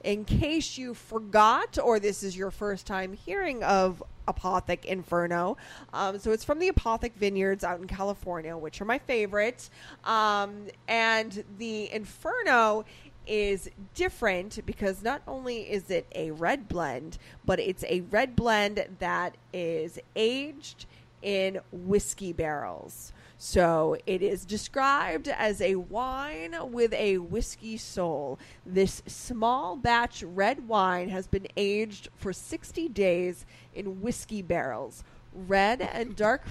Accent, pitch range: American, 190-230 Hz